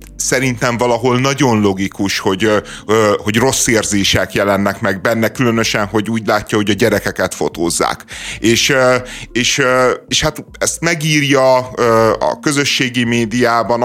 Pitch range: 100-125 Hz